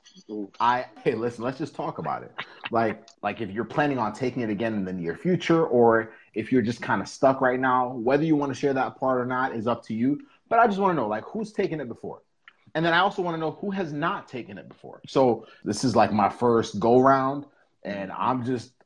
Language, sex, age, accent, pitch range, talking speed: English, male, 30-49, American, 120-165 Hz, 250 wpm